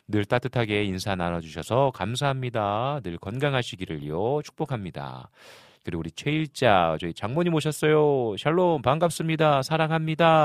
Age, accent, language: 40-59, native, Korean